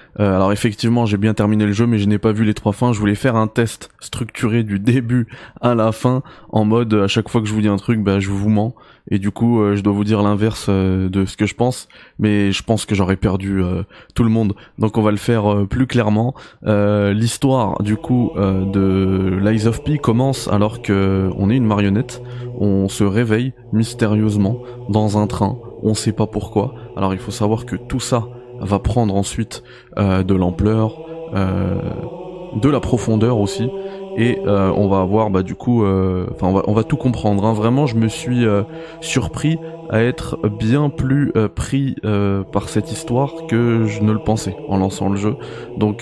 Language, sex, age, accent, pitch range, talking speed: French, male, 20-39, French, 100-120 Hz, 215 wpm